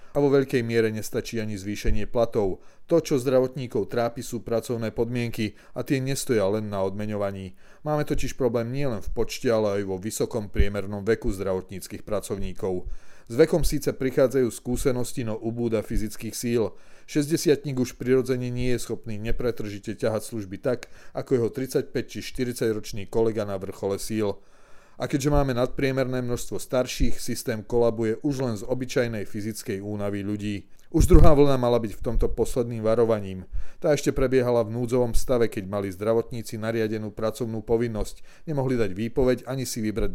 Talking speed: 155 wpm